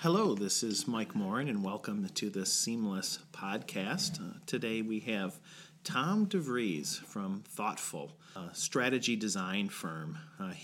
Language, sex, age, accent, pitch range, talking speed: English, male, 40-59, American, 105-165 Hz, 135 wpm